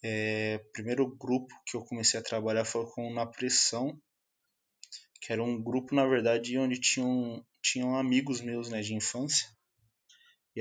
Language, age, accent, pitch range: Portuguese, 20-39, Brazilian, 115-140 Hz